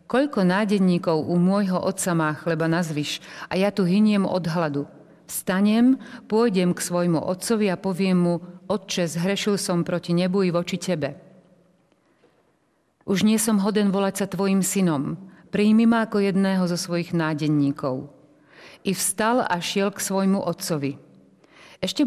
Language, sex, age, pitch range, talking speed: Slovak, female, 50-69, 165-200 Hz, 145 wpm